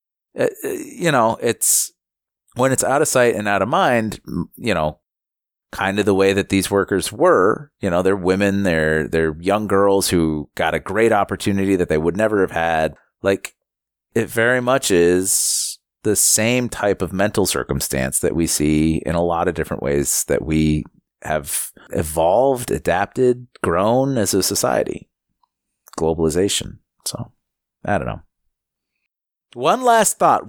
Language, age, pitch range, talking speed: English, 30-49, 80-105 Hz, 155 wpm